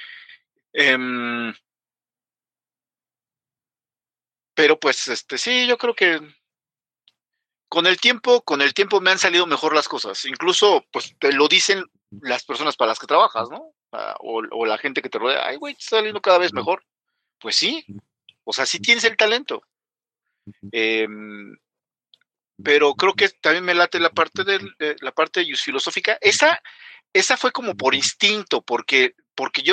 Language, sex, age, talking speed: Spanish, male, 50-69, 160 wpm